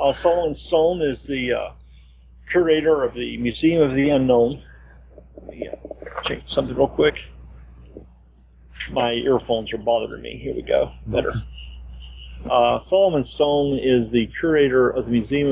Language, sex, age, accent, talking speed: English, male, 40-59, American, 145 wpm